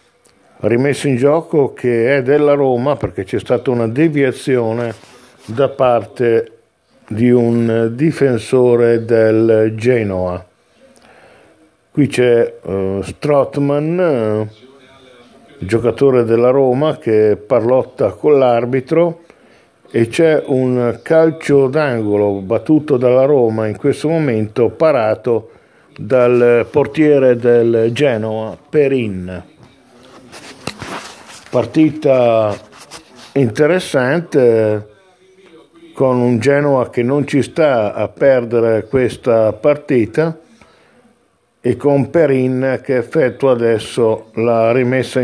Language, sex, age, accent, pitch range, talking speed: Italian, male, 50-69, native, 115-140 Hz, 90 wpm